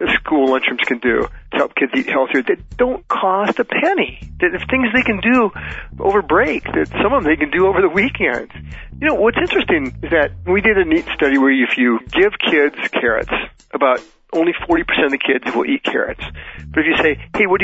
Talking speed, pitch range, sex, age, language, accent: 220 wpm, 125-180 Hz, male, 40-59, English, American